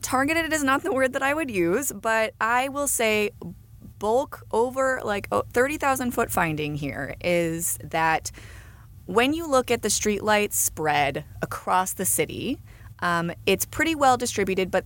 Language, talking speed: English, 155 wpm